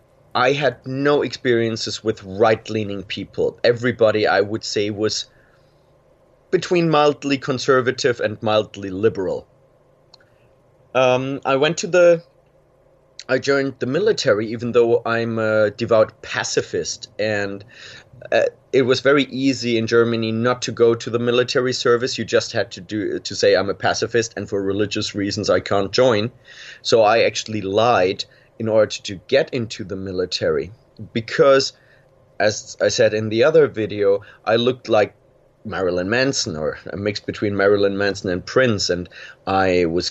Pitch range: 105-135 Hz